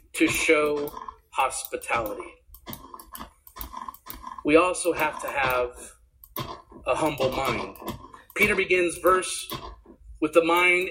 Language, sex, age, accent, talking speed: English, male, 40-59, American, 95 wpm